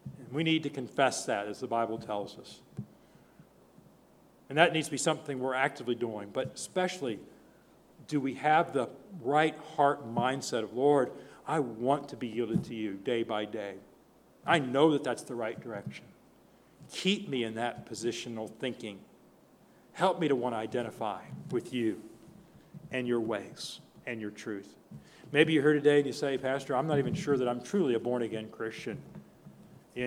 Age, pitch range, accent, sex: 50-69, 125-155 Hz, American, male